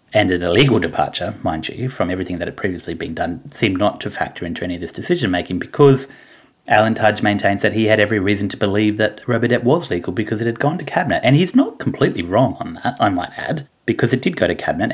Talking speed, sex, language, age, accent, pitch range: 235 wpm, male, English, 30-49, Australian, 95-130 Hz